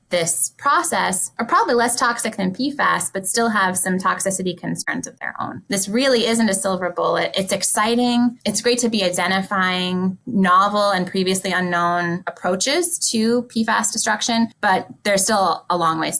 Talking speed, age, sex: 165 wpm, 20-39, female